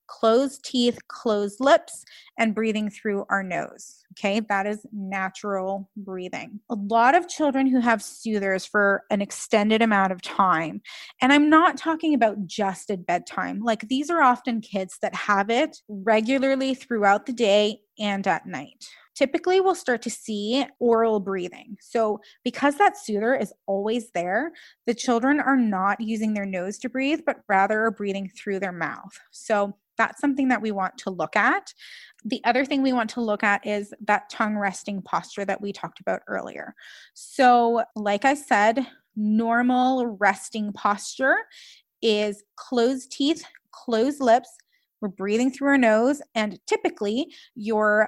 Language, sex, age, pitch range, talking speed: English, female, 20-39, 205-260 Hz, 160 wpm